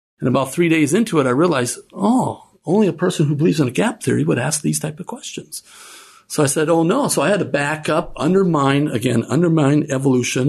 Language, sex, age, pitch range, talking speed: English, male, 50-69, 125-175 Hz, 225 wpm